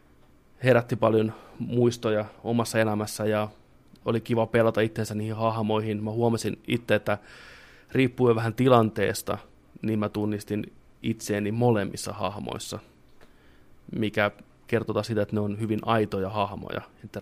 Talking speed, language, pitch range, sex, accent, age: 120 wpm, Finnish, 95-115 Hz, male, native, 20-39